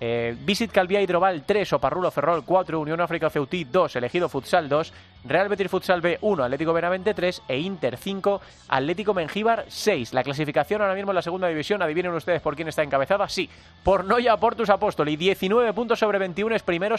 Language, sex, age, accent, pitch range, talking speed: Spanish, male, 30-49, Spanish, 155-200 Hz, 185 wpm